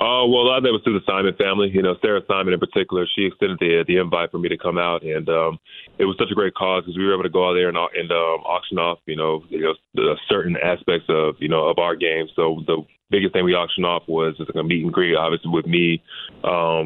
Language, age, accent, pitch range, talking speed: English, 20-39, American, 80-90 Hz, 285 wpm